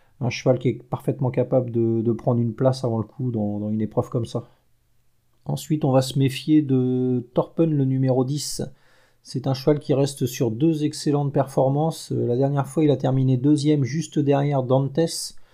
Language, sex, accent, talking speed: French, male, French, 190 wpm